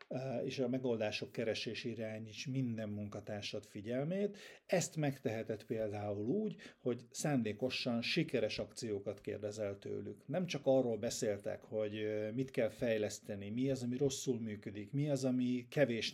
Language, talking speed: Hungarian, 130 wpm